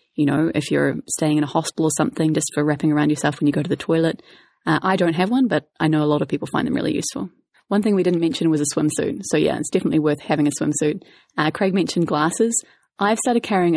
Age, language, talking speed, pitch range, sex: 30-49, English, 260 wpm, 150-185 Hz, female